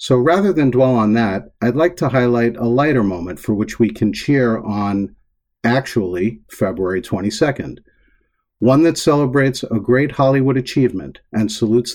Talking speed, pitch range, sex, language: 155 wpm, 105-130 Hz, male, English